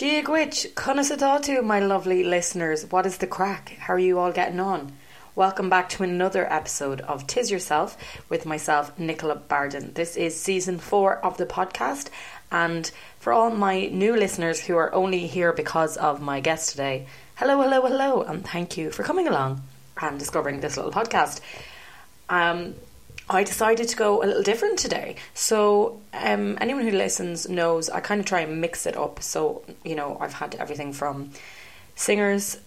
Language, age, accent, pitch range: English, 30-49, Irish, 150-205 Hz